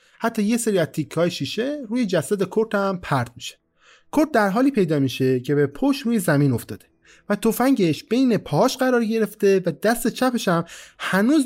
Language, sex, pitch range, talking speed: Persian, male, 155-240 Hz, 175 wpm